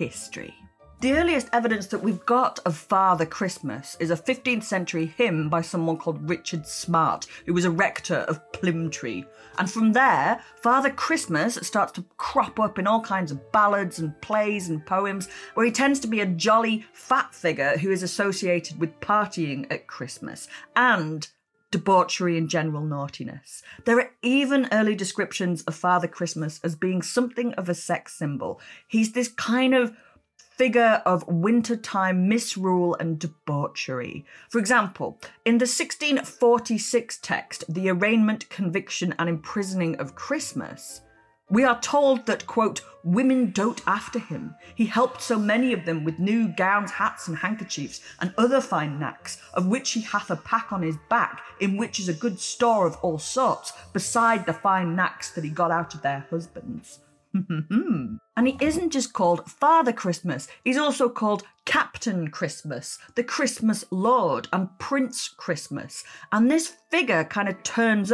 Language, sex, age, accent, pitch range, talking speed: English, female, 40-59, British, 170-235 Hz, 160 wpm